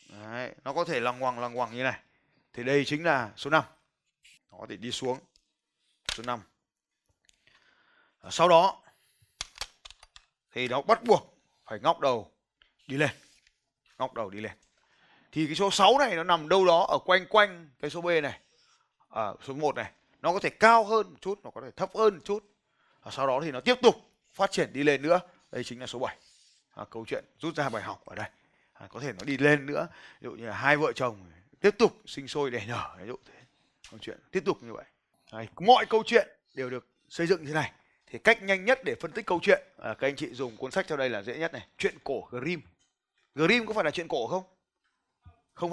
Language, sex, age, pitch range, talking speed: Vietnamese, male, 20-39, 130-195 Hz, 220 wpm